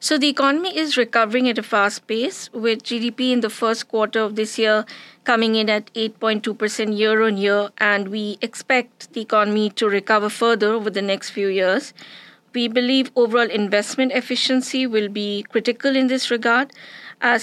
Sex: female